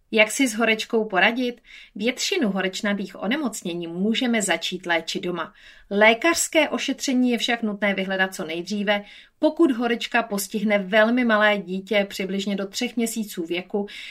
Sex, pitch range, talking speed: female, 190-230 Hz, 130 wpm